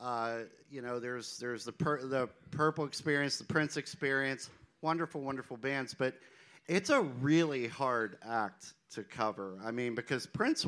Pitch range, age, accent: 110-135 Hz, 50-69, American